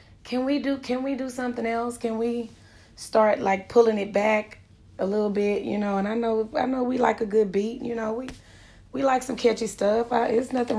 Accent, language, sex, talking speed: American, English, female, 230 wpm